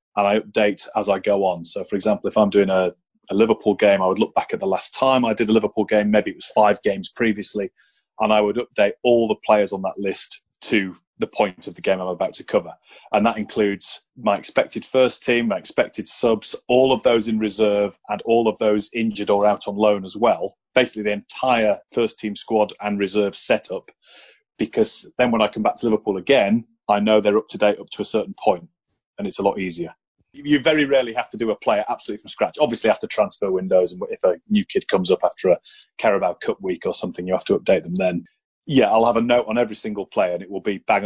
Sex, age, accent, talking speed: male, 30-49, British, 240 wpm